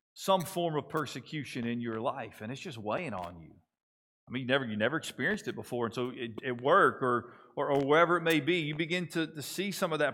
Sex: male